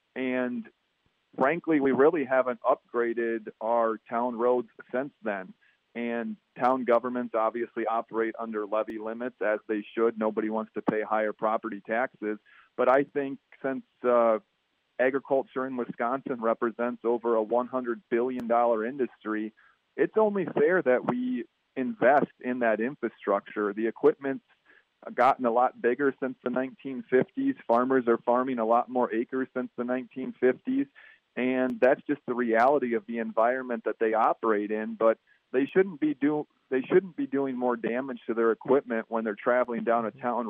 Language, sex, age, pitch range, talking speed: English, male, 40-59, 115-130 Hz, 150 wpm